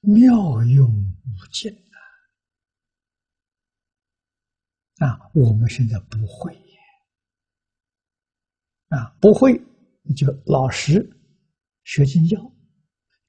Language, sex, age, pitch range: Chinese, male, 60-79, 100-150 Hz